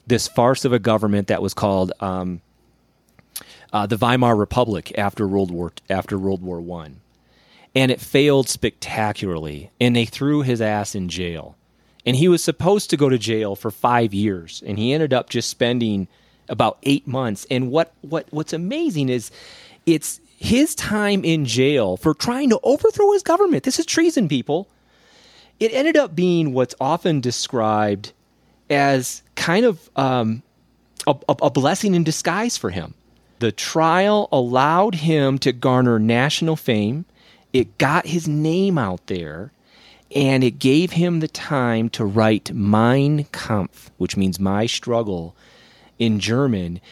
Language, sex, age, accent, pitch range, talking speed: English, male, 30-49, American, 105-155 Hz, 155 wpm